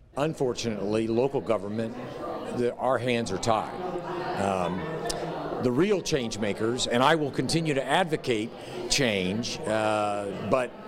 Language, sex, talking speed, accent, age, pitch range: English, male, 120 wpm, American, 50-69, 105-130 Hz